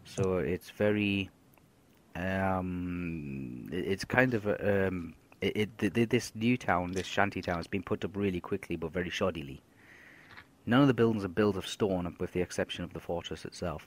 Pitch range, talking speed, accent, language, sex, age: 85-105 Hz, 180 wpm, British, English, male, 30-49